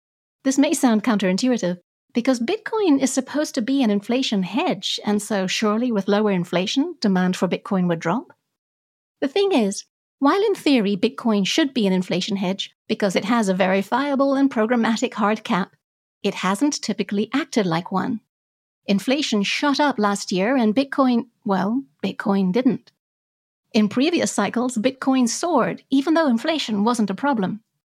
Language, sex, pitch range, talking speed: English, female, 200-270 Hz, 155 wpm